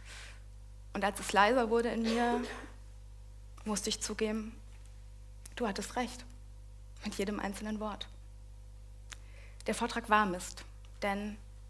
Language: German